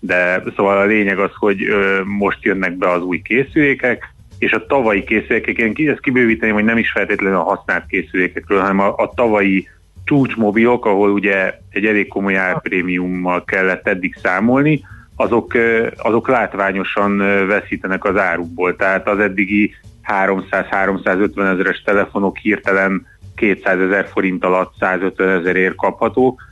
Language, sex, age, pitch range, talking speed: Hungarian, male, 30-49, 95-105 Hz, 140 wpm